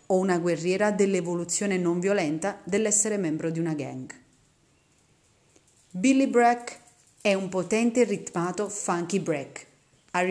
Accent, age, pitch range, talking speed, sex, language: native, 30-49, 170-210 Hz, 115 wpm, female, Italian